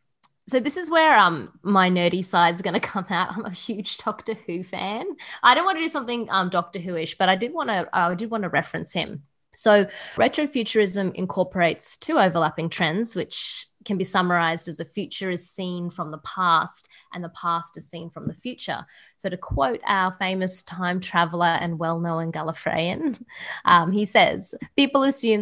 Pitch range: 165-195 Hz